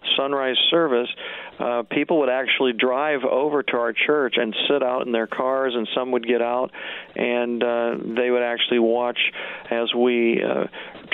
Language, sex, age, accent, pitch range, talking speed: English, male, 50-69, American, 115-130 Hz, 165 wpm